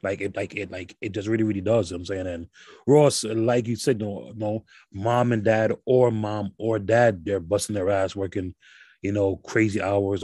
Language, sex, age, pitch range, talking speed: English, male, 30-49, 100-135 Hz, 205 wpm